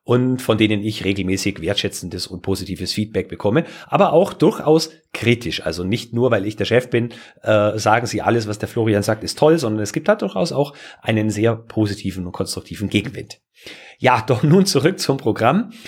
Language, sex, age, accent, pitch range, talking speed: German, male, 40-59, German, 105-150 Hz, 190 wpm